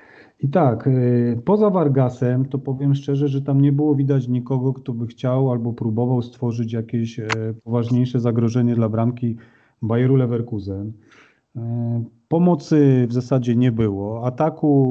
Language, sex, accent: Polish, male, native